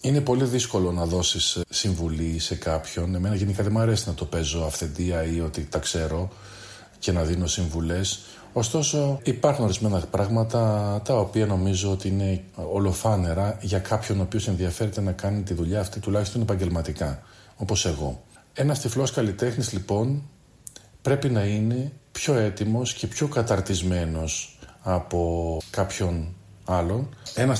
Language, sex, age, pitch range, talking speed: Greek, male, 40-59, 85-110 Hz, 140 wpm